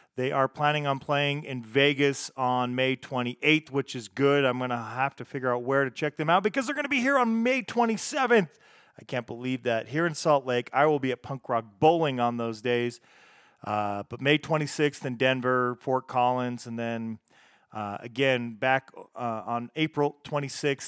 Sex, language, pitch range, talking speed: male, English, 125-145 Hz, 200 wpm